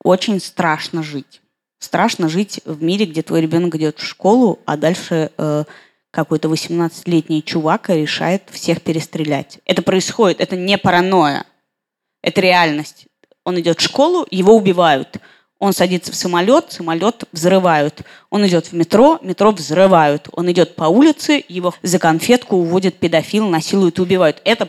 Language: Russian